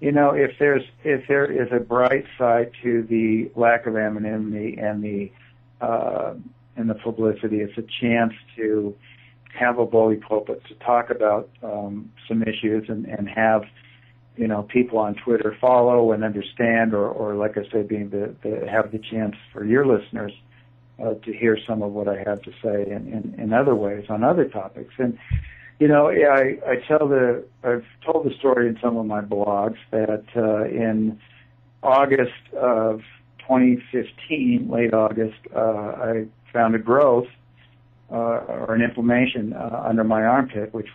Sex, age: male, 60-79